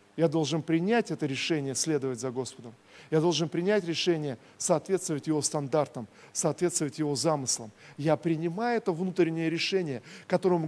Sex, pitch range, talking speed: male, 165-205 Hz, 135 wpm